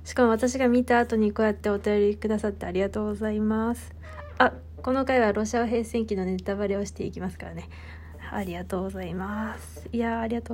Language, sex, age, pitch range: Japanese, female, 20-39, 190-245 Hz